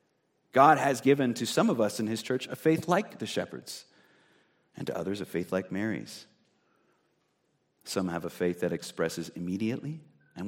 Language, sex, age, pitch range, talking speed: English, male, 30-49, 95-135 Hz, 170 wpm